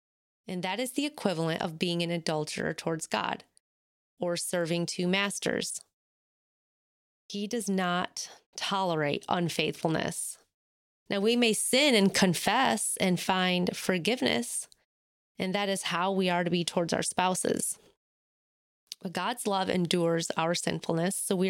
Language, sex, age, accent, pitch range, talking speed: English, female, 20-39, American, 170-200 Hz, 135 wpm